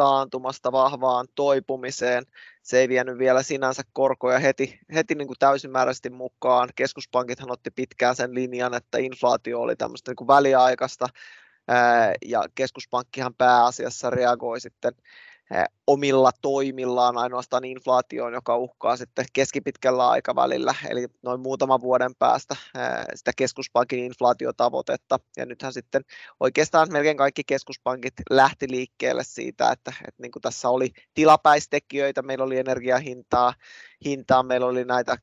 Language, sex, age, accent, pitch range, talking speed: Finnish, male, 20-39, native, 125-135 Hz, 125 wpm